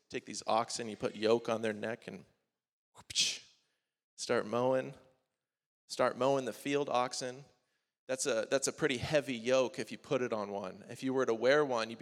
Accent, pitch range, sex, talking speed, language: American, 115-135 Hz, male, 185 wpm, English